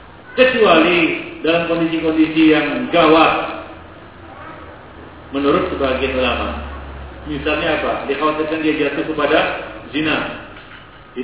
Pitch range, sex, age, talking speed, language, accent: 130-160 Hz, male, 40-59, 85 wpm, English, Indonesian